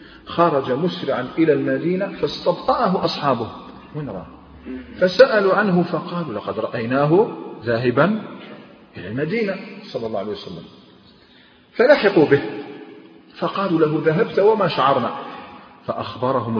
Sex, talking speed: male, 100 wpm